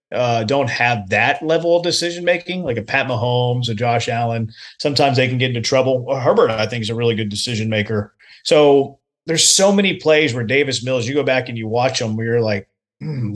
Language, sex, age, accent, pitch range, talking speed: English, male, 30-49, American, 115-145 Hz, 225 wpm